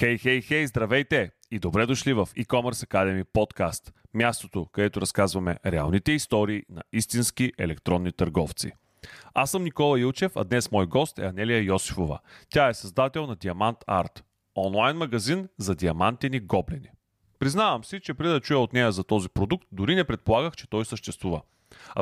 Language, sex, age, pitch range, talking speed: Bulgarian, male, 30-49, 100-135 Hz, 160 wpm